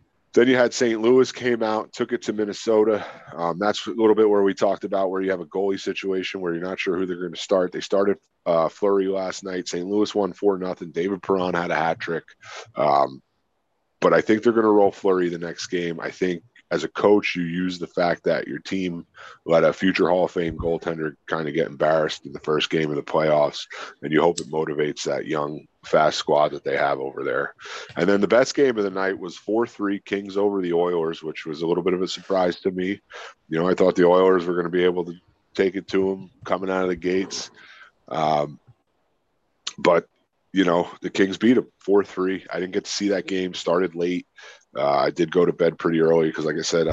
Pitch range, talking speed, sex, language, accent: 85-105 Hz, 235 wpm, male, English, American